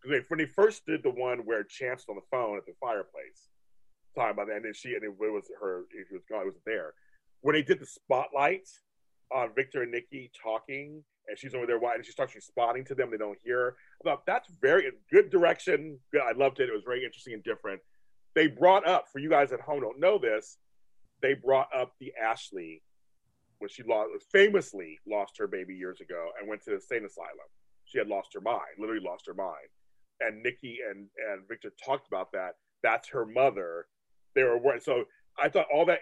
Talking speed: 210 wpm